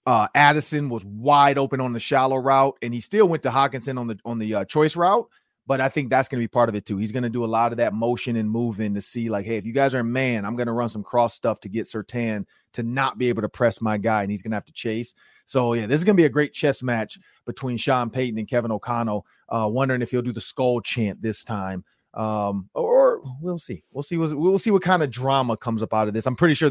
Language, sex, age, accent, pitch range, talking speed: English, male, 30-49, American, 110-145 Hz, 290 wpm